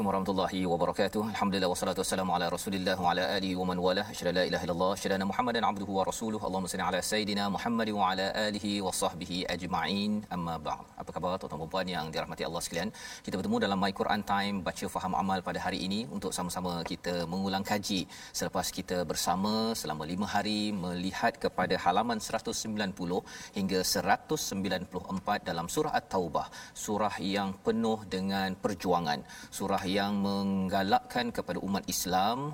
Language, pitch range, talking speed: Malayalam, 95-105 Hz, 165 wpm